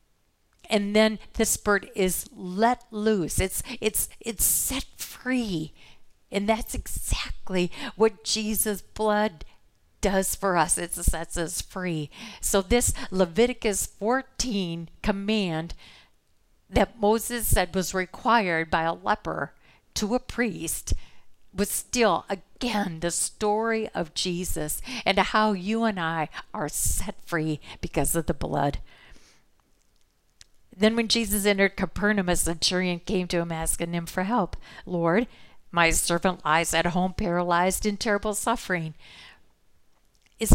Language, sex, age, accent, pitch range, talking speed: English, female, 50-69, American, 170-215 Hz, 125 wpm